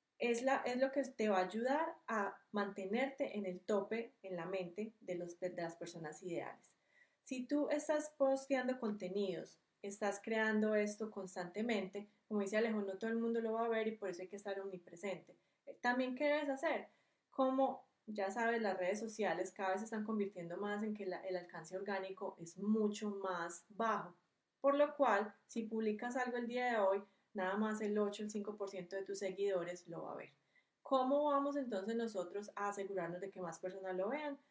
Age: 30-49